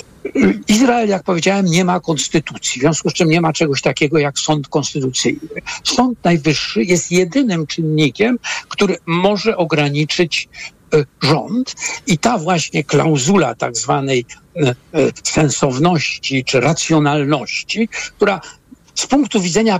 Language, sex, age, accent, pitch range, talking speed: Polish, male, 60-79, native, 150-195 Hz, 120 wpm